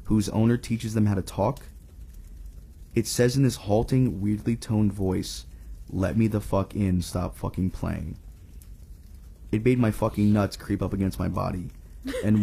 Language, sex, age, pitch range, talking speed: English, male, 20-39, 90-115 Hz, 165 wpm